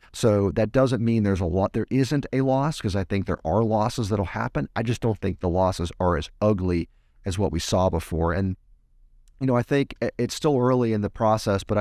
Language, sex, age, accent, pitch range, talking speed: English, male, 40-59, American, 95-115 Hz, 230 wpm